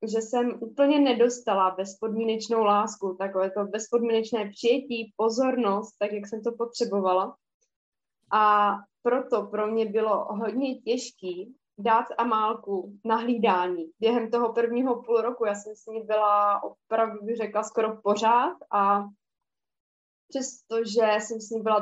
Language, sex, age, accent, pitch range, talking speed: Czech, female, 20-39, native, 210-240 Hz, 135 wpm